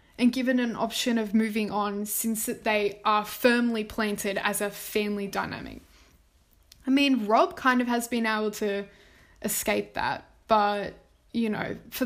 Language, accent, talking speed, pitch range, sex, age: English, Australian, 155 wpm, 210-250 Hz, female, 10-29